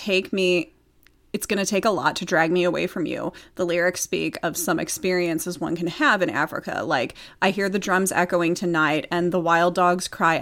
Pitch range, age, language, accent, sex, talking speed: 170-190 Hz, 30-49, English, American, female, 210 wpm